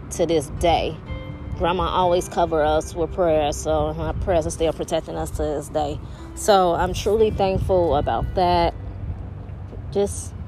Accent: American